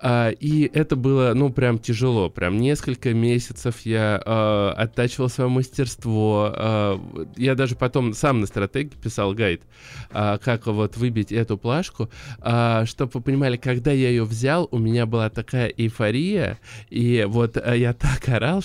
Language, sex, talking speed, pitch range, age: Russian, male, 160 wpm, 105-130 Hz, 20-39